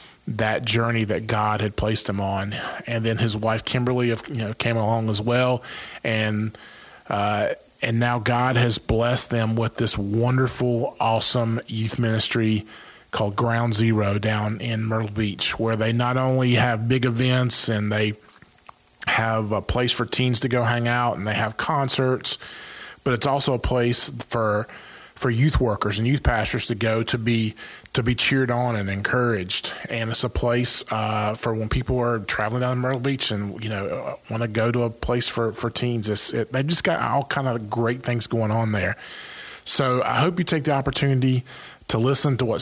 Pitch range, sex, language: 110-125 Hz, male, English